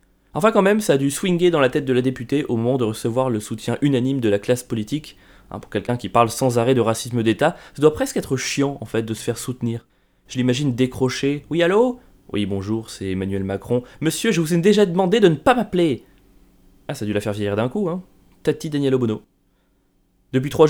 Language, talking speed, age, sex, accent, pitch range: French, 230 wpm, 20-39, male, French, 115-155 Hz